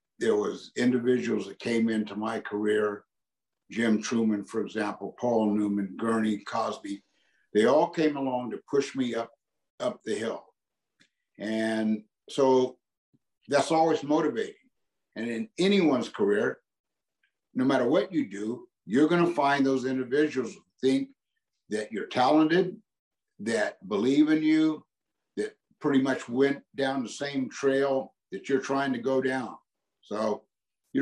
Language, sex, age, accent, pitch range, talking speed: English, male, 60-79, American, 120-165 Hz, 135 wpm